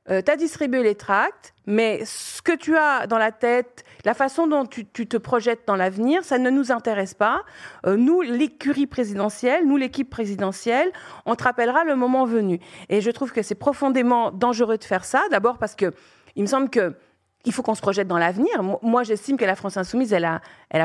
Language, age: French, 40-59